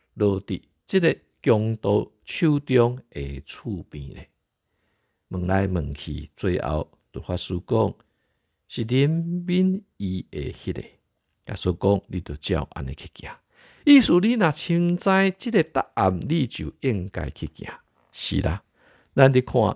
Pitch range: 80-125 Hz